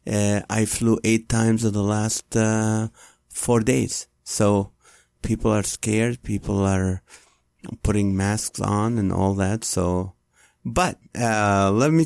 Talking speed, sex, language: 140 wpm, male, English